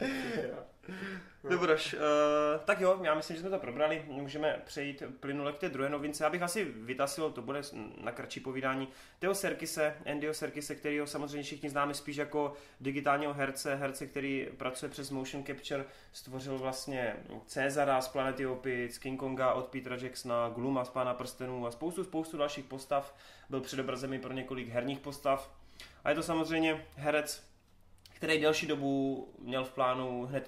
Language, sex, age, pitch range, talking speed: Czech, male, 20-39, 130-155 Hz, 160 wpm